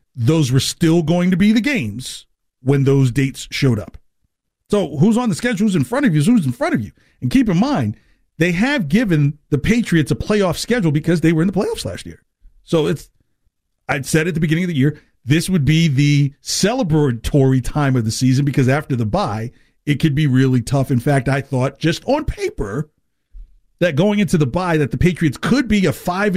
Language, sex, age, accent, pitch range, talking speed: English, male, 50-69, American, 110-170 Hz, 215 wpm